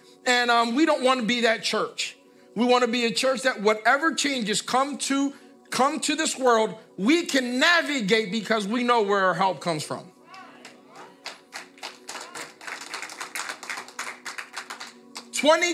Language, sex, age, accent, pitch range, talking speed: English, male, 50-69, American, 200-260 Hz, 135 wpm